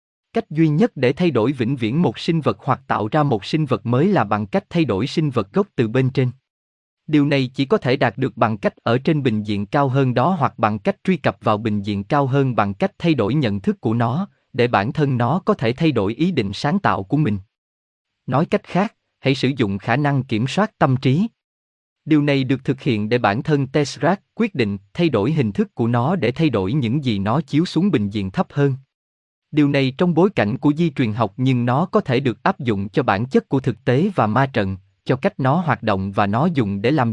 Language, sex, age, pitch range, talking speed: Vietnamese, male, 20-39, 110-160 Hz, 245 wpm